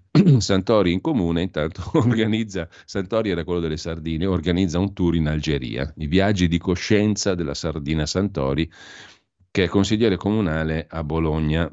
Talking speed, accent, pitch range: 145 wpm, native, 75-95 Hz